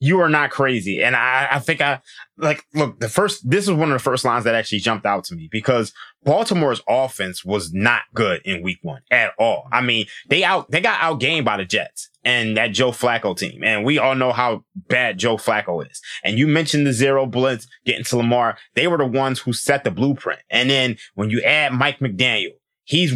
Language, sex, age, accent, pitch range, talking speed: English, male, 20-39, American, 115-140 Hz, 225 wpm